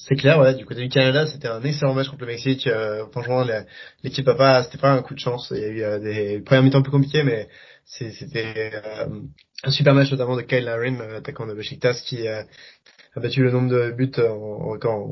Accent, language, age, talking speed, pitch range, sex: French, French, 20-39, 240 wpm, 115-140 Hz, male